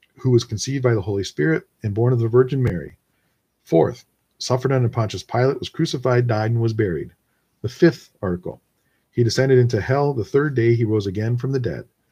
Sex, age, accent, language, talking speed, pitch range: male, 50-69, American, English, 200 wpm, 105-130 Hz